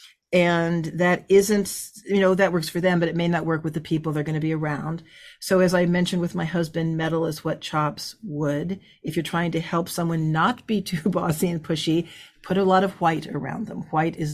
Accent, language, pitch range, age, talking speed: American, English, 160-210 Hz, 50-69, 230 wpm